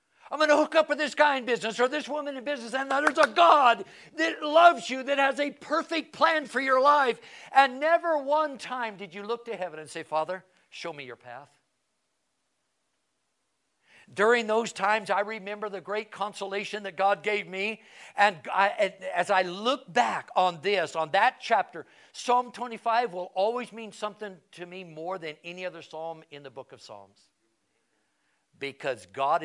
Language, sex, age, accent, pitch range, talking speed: English, male, 60-79, American, 165-245 Hz, 180 wpm